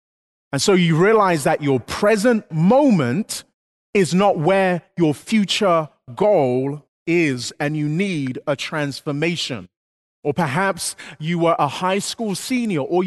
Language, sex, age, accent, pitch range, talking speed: English, male, 30-49, British, 130-185 Hz, 135 wpm